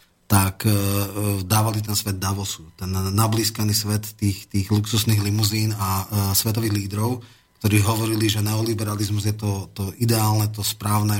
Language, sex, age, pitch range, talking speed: Slovak, male, 30-49, 100-115 Hz, 140 wpm